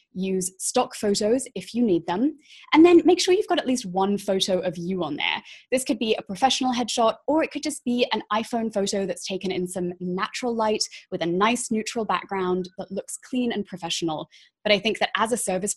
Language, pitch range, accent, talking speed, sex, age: English, 185-250 Hz, British, 220 wpm, female, 20-39